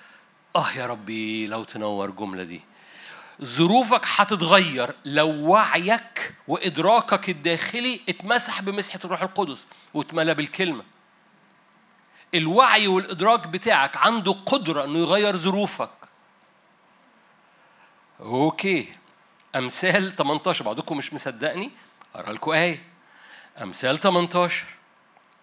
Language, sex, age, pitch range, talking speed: Arabic, male, 60-79, 150-205 Hz, 90 wpm